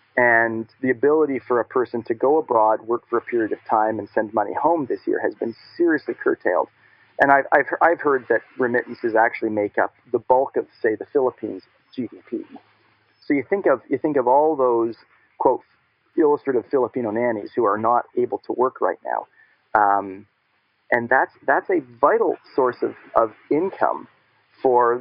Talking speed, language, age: 180 wpm, English, 40-59